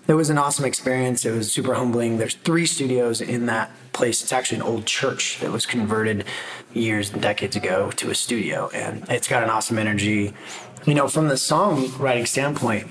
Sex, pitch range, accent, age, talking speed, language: male, 110-125 Hz, American, 30-49, 195 wpm, English